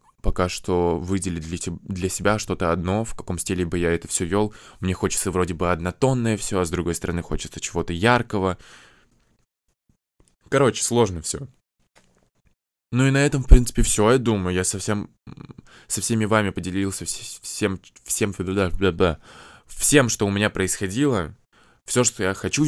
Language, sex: Russian, male